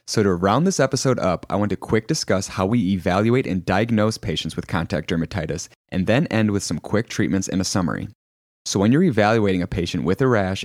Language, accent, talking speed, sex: English, American, 220 wpm, male